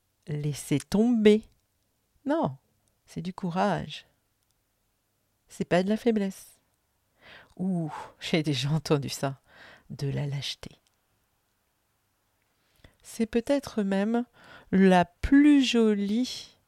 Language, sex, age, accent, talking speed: French, female, 50-69, French, 90 wpm